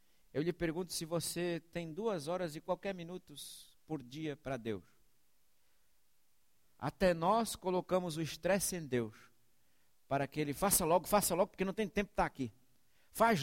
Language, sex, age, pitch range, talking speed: English, male, 60-79, 125-200 Hz, 165 wpm